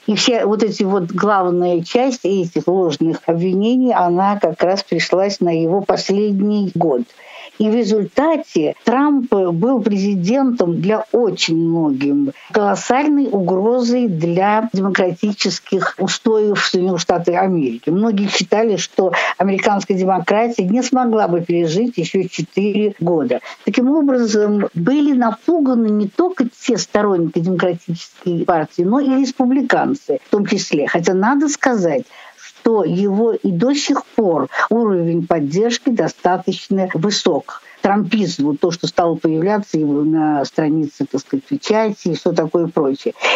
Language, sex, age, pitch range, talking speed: Russian, female, 60-79, 180-240 Hz, 125 wpm